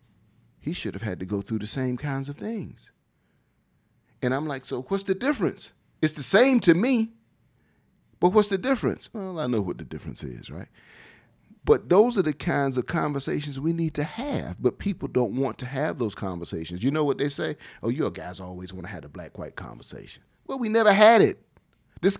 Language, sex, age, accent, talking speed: English, male, 40-59, American, 205 wpm